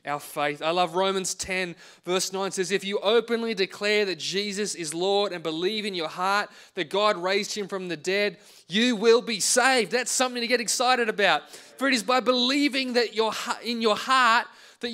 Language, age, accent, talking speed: English, 20-39, Australian, 200 wpm